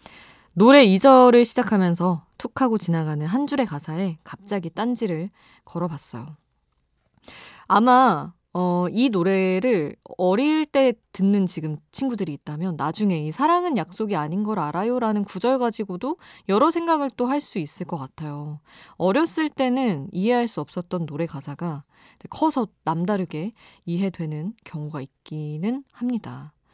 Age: 20-39